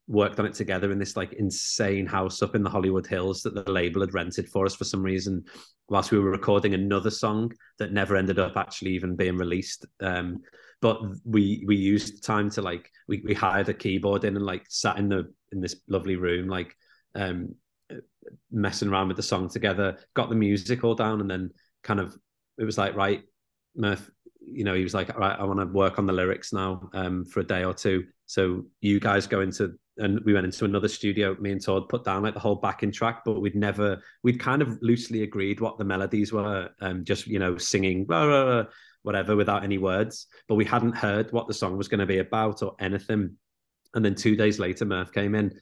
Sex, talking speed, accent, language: male, 220 wpm, British, English